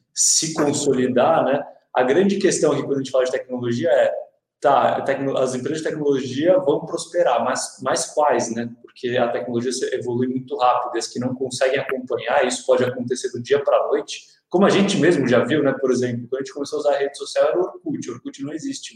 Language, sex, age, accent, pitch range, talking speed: Portuguese, male, 20-39, Brazilian, 130-160 Hz, 220 wpm